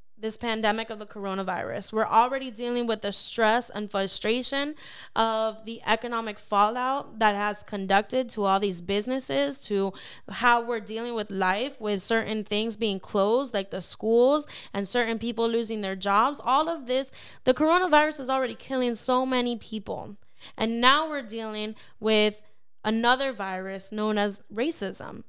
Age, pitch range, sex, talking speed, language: 10-29, 205-250 Hz, female, 155 wpm, English